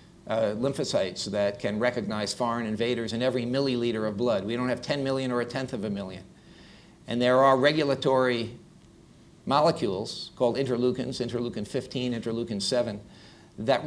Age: 50-69